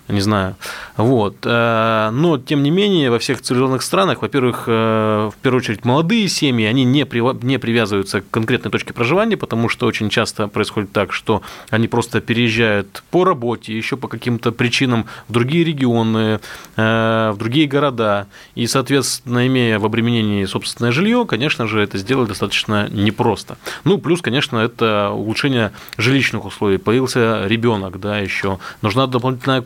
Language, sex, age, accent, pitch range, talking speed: Russian, male, 20-39, native, 110-130 Hz, 150 wpm